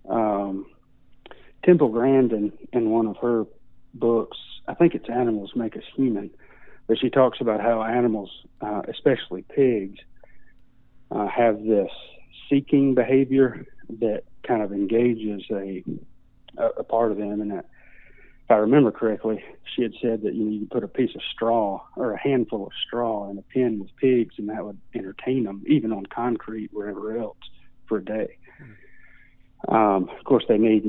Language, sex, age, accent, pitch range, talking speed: English, male, 40-59, American, 100-120 Hz, 165 wpm